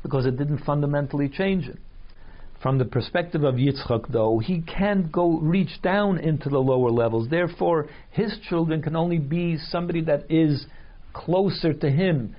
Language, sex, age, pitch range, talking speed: English, male, 60-79, 125-165 Hz, 160 wpm